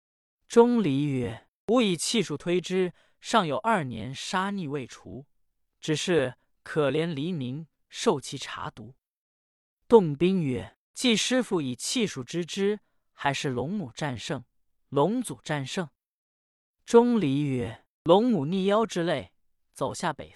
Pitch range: 135-205 Hz